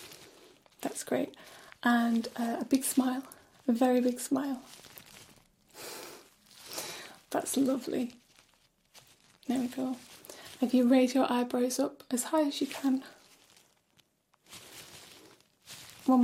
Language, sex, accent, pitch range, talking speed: English, female, British, 245-275 Hz, 105 wpm